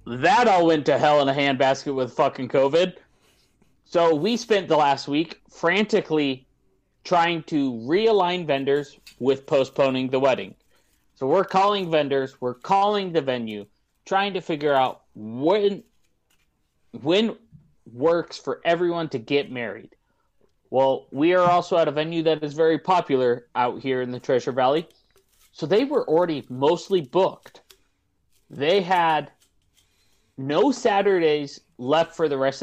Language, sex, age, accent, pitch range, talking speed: English, male, 30-49, American, 135-180 Hz, 140 wpm